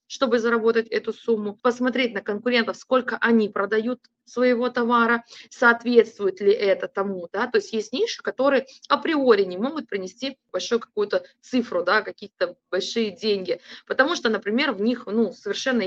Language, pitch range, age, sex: Russian, 200-260 Hz, 20-39, female